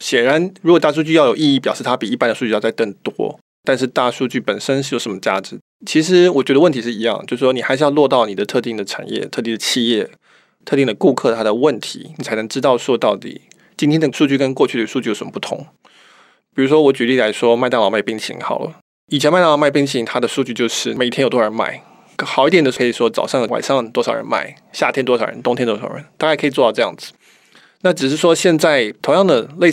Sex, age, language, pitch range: male, 20-39, Chinese, 120-150 Hz